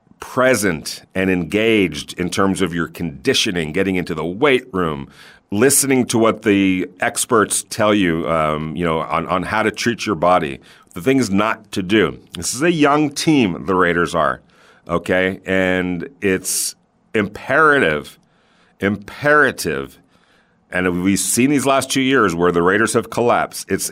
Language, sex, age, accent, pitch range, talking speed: English, male, 40-59, American, 90-120 Hz, 155 wpm